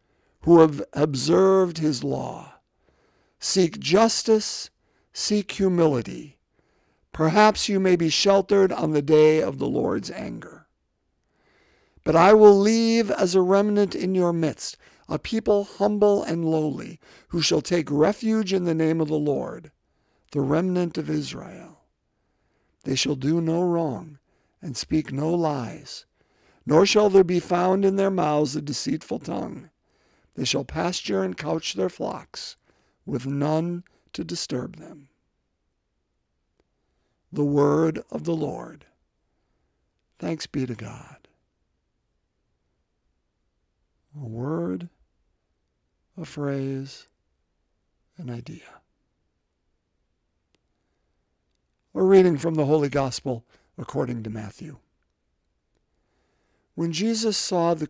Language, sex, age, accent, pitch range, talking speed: English, male, 50-69, American, 120-180 Hz, 115 wpm